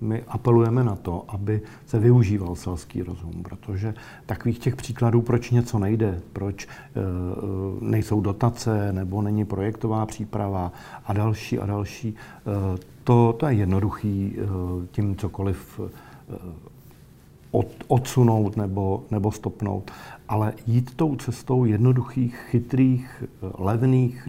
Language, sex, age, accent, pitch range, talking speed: Czech, male, 50-69, native, 100-120 Hz, 110 wpm